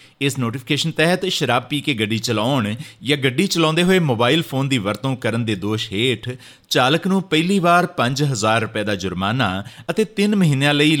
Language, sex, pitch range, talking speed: Punjabi, male, 115-165 Hz, 175 wpm